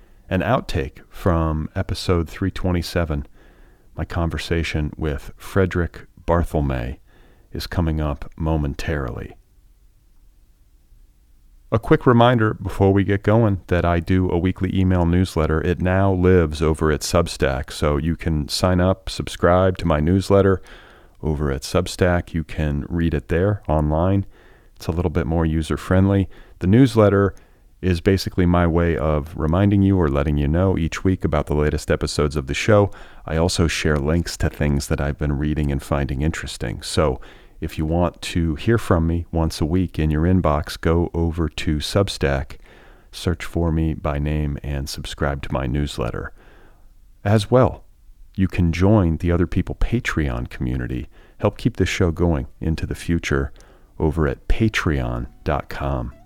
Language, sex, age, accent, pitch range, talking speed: English, male, 40-59, American, 75-95 Hz, 155 wpm